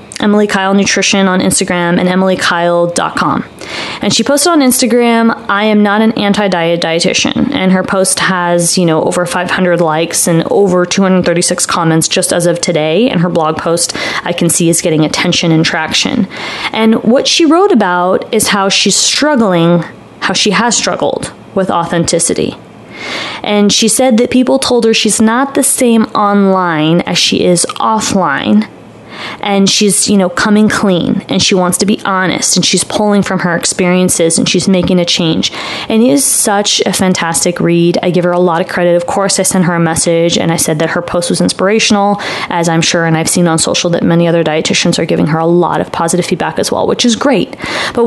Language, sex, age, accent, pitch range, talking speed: English, female, 20-39, American, 170-210 Hz, 195 wpm